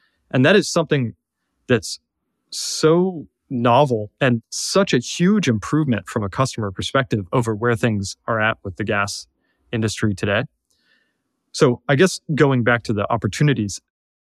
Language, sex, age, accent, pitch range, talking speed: English, male, 30-49, American, 105-130 Hz, 145 wpm